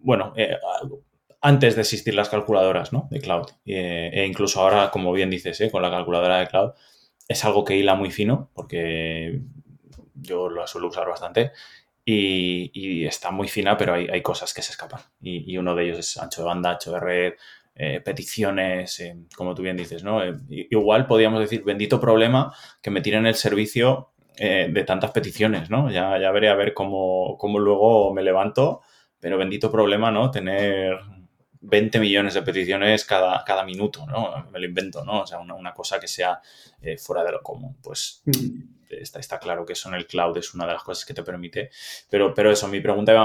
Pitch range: 90-110 Hz